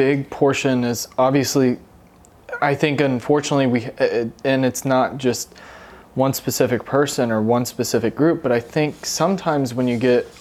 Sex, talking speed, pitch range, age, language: male, 150 wpm, 115-135 Hz, 20-39, English